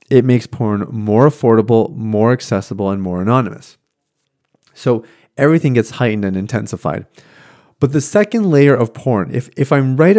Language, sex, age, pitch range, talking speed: English, male, 30-49, 105-140 Hz, 155 wpm